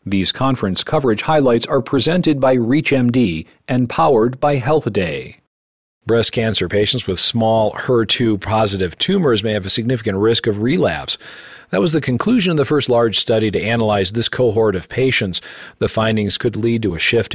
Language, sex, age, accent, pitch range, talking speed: English, male, 40-59, American, 100-125 Hz, 165 wpm